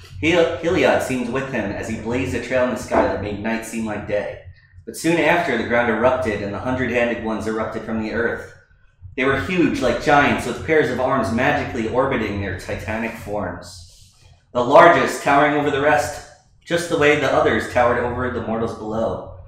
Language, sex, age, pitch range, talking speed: English, male, 30-49, 105-130 Hz, 190 wpm